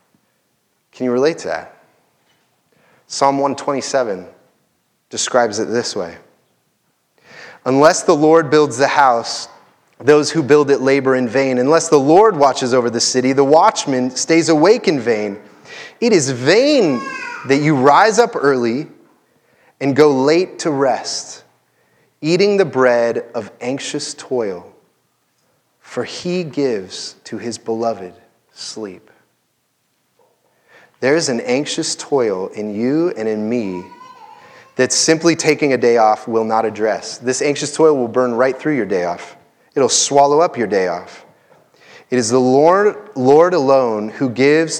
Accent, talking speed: American, 140 wpm